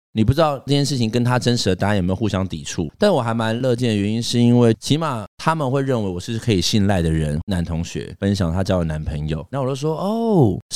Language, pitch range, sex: Chinese, 95-125 Hz, male